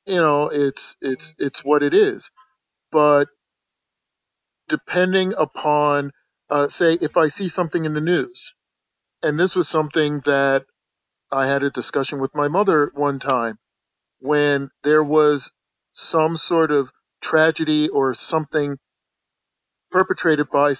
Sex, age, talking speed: male, 40-59, 130 wpm